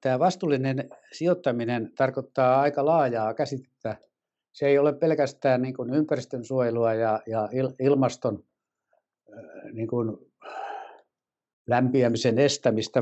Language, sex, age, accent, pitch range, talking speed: Finnish, male, 60-79, native, 115-140 Hz, 90 wpm